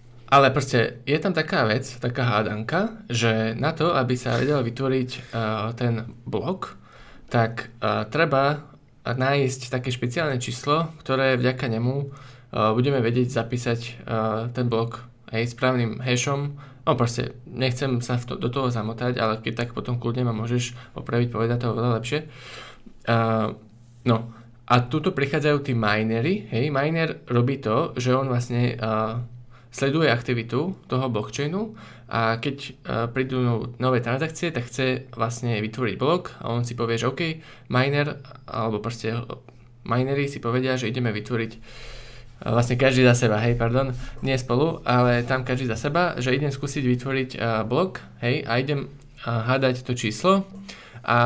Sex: male